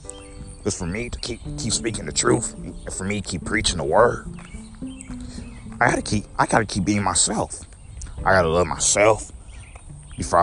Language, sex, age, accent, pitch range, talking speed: English, male, 30-49, American, 80-105 Hz, 175 wpm